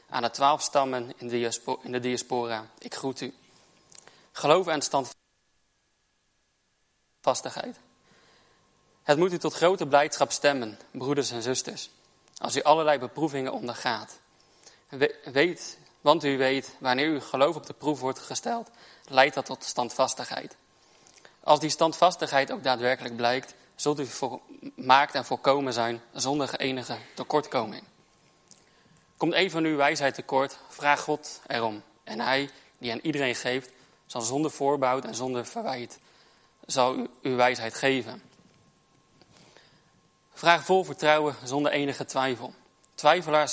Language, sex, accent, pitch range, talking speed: Dutch, male, Dutch, 125-145 Hz, 130 wpm